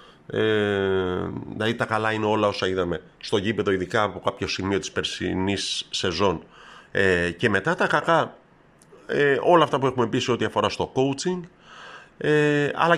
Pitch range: 100-130 Hz